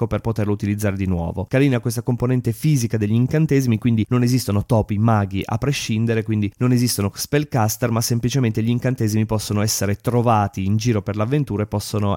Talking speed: 175 wpm